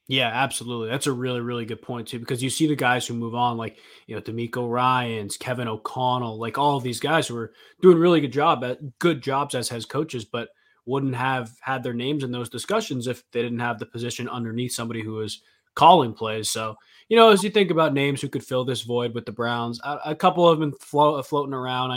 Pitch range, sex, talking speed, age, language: 120-140 Hz, male, 235 wpm, 20-39, English